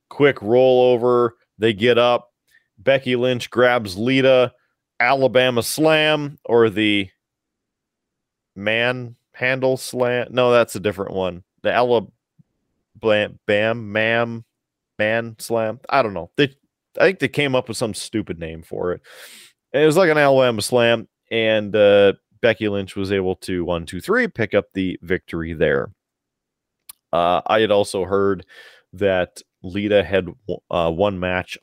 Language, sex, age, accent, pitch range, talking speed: English, male, 30-49, American, 95-125 Hz, 140 wpm